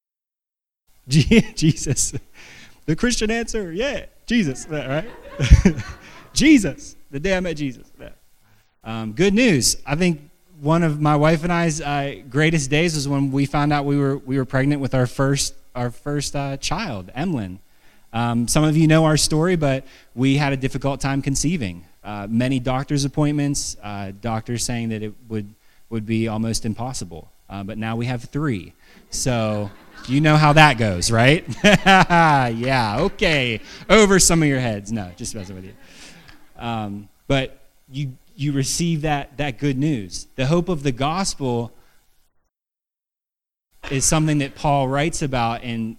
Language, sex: English, male